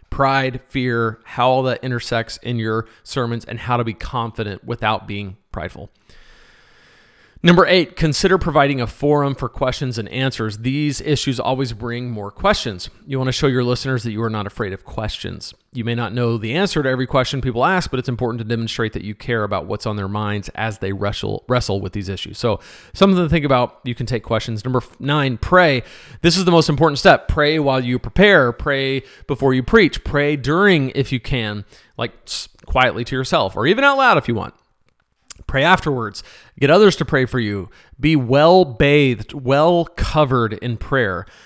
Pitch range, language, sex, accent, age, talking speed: 115-150 Hz, English, male, American, 40-59, 195 wpm